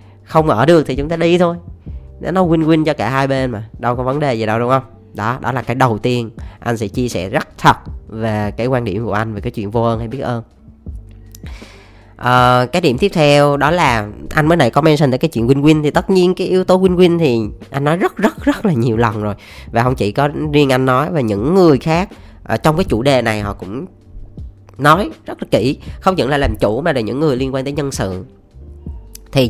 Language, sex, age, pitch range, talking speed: Vietnamese, female, 10-29, 110-155 Hz, 245 wpm